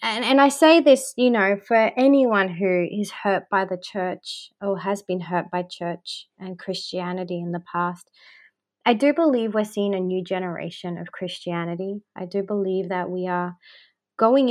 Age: 20-39